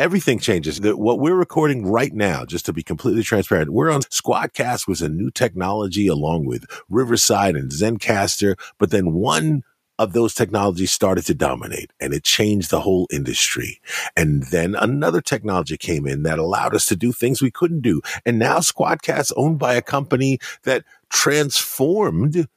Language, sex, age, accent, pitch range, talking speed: English, male, 50-69, American, 105-140 Hz, 165 wpm